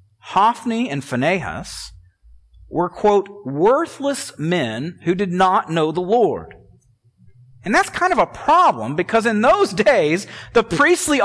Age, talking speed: 40-59, 135 wpm